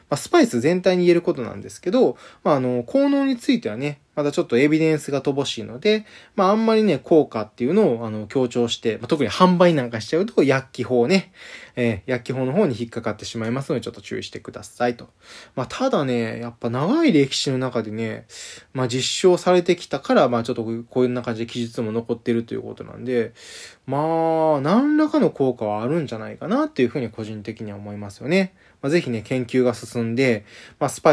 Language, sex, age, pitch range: Japanese, male, 20-39, 115-150 Hz